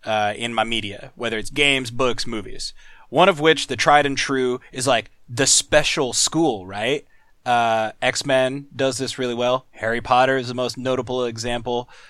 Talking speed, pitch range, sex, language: 175 wpm, 115-140 Hz, male, English